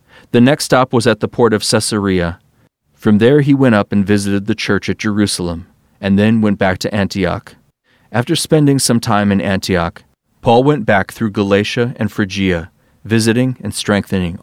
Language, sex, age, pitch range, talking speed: English, male, 30-49, 95-120 Hz, 175 wpm